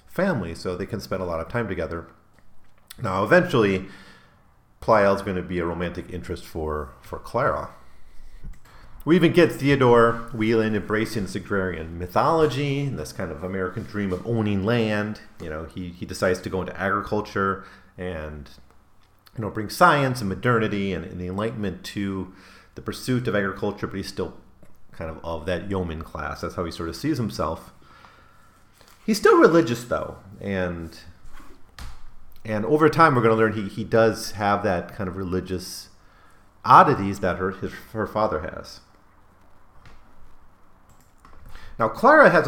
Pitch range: 90-110 Hz